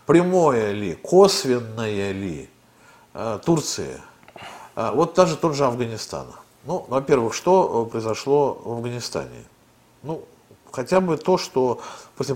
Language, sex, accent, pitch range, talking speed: Russian, male, native, 115-160 Hz, 105 wpm